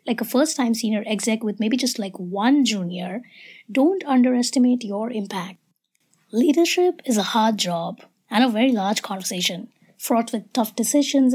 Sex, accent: female, Indian